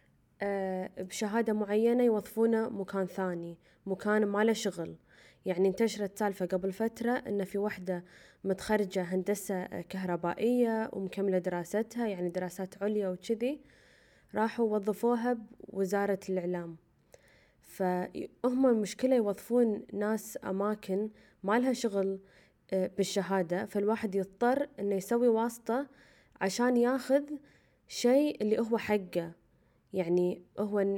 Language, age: Arabic, 20-39